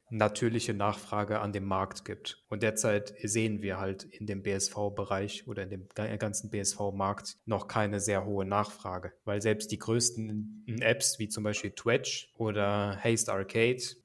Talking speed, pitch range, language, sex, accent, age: 155 wpm, 105-115 Hz, German, male, German, 20-39